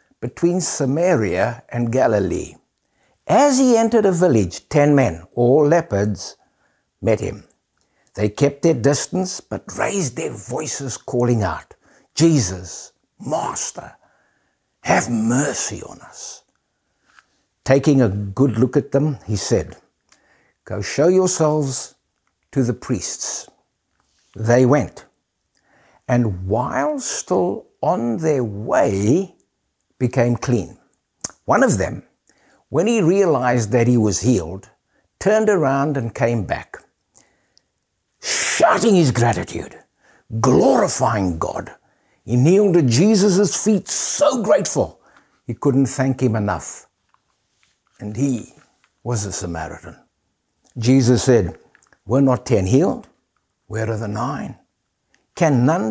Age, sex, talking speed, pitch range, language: 60-79, male, 110 wpm, 110-155 Hz, English